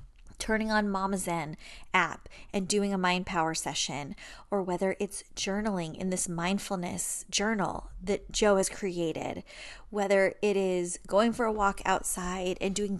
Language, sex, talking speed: English, female, 150 wpm